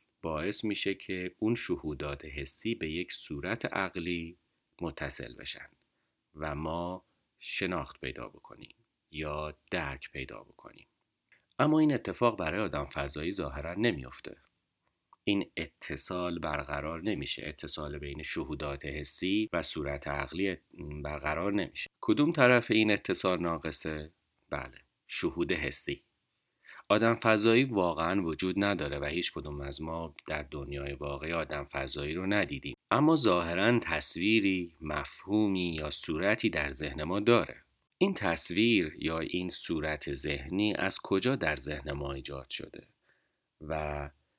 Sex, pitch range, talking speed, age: male, 75-90 Hz, 125 wpm, 40-59